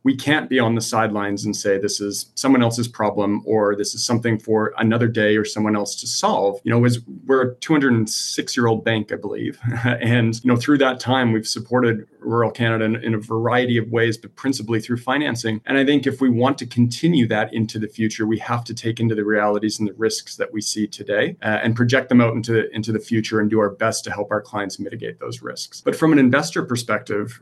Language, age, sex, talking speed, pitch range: English, 40-59, male, 230 wpm, 105-125 Hz